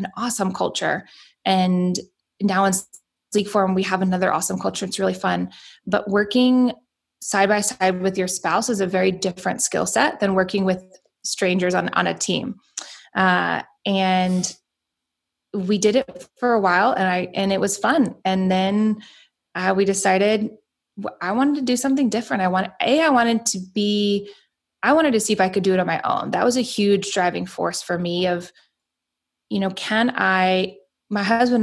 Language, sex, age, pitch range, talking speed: English, female, 20-39, 180-205 Hz, 180 wpm